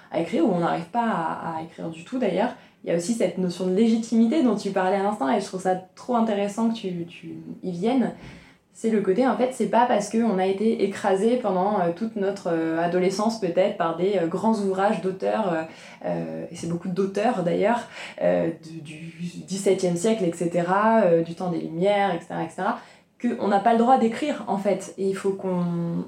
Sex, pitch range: female, 180-225 Hz